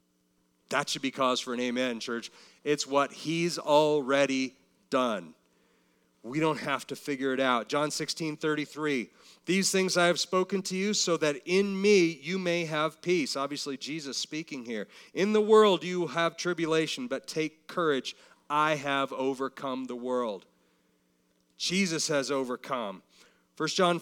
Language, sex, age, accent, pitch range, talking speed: English, male, 40-59, American, 125-175 Hz, 150 wpm